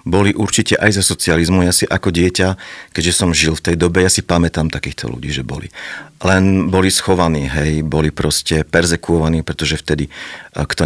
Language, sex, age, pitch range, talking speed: Slovak, male, 50-69, 85-95 Hz, 175 wpm